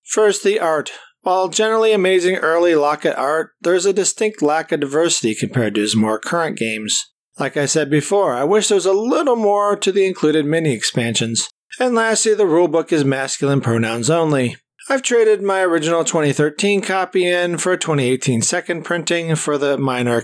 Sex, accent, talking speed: male, American, 180 wpm